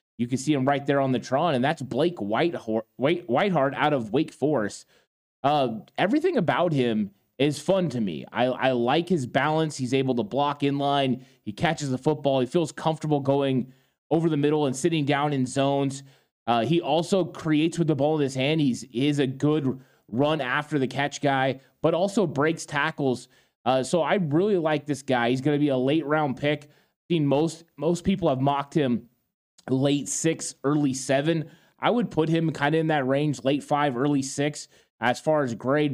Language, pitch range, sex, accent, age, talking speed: English, 130-160 Hz, male, American, 20-39, 200 wpm